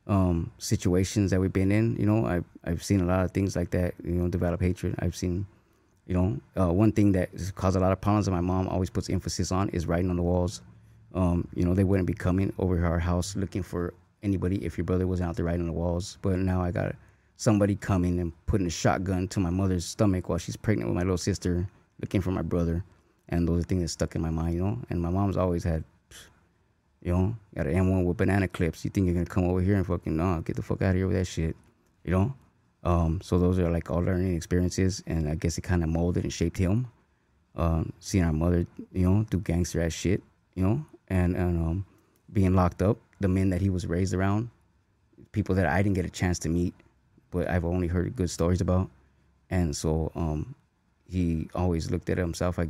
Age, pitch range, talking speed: 20-39, 85-95 Hz, 240 wpm